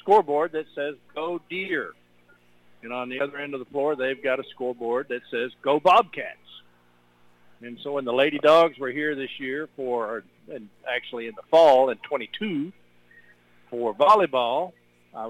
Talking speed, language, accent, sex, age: 165 wpm, English, American, male, 50-69